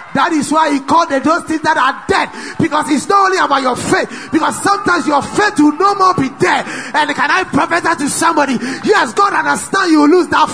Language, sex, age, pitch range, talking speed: English, male, 20-39, 285-365 Hz, 230 wpm